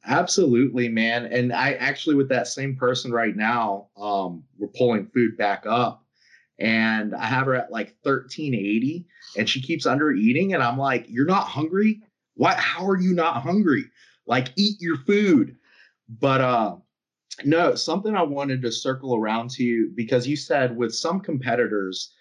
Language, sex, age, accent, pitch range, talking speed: English, male, 30-49, American, 110-140 Hz, 170 wpm